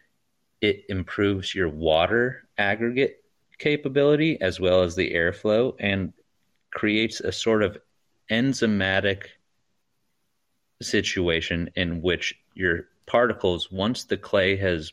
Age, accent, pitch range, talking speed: 30-49, American, 85-105 Hz, 105 wpm